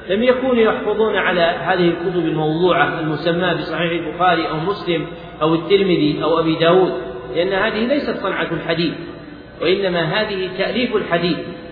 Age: 40-59